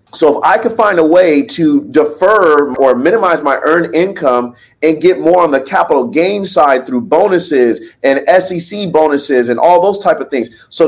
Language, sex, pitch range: English, male, 140-215 Hz